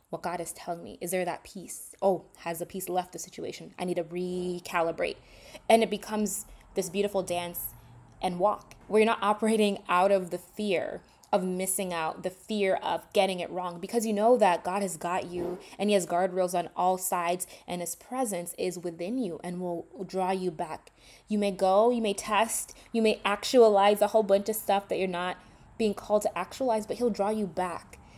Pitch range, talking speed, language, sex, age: 175-210 Hz, 205 wpm, English, female, 20-39